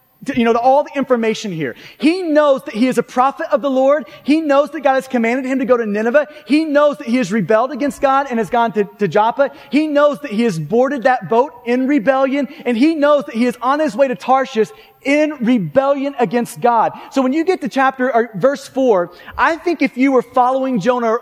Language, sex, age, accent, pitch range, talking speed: English, male, 30-49, American, 225-280 Hz, 235 wpm